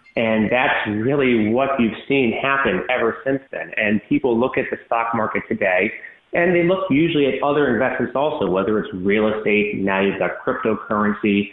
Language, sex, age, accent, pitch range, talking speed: English, male, 30-49, American, 100-125 Hz, 175 wpm